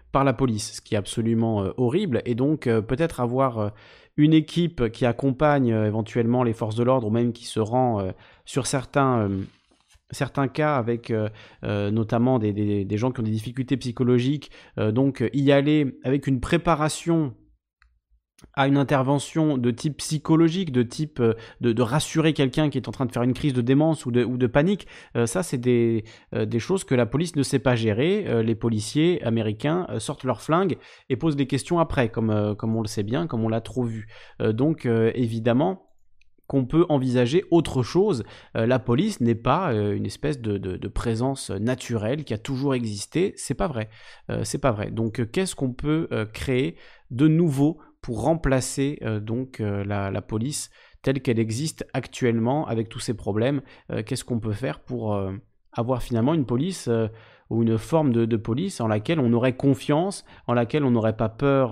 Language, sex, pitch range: French, male, 110-140 Hz